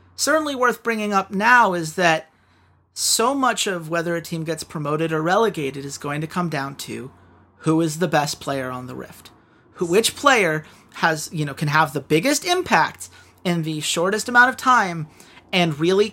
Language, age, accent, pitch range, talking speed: English, 40-59, American, 150-210 Hz, 185 wpm